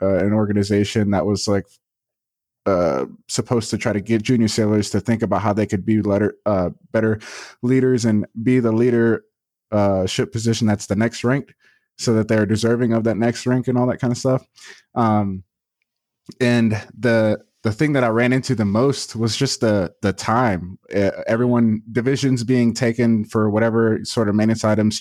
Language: English